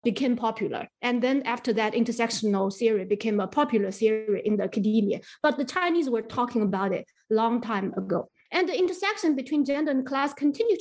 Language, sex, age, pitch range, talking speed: English, female, 30-49, 215-285 Hz, 185 wpm